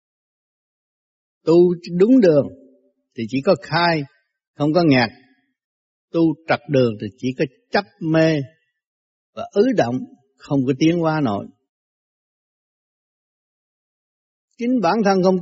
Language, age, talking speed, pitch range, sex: Vietnamese, 60-79, 115 wpm, 125-175 Hz, male